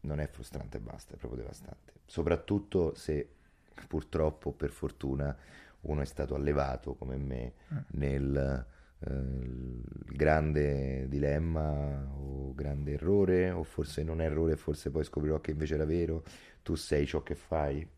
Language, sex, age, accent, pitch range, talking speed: Italian, male, 30-49, native, 70-85 Hz, 145 wpm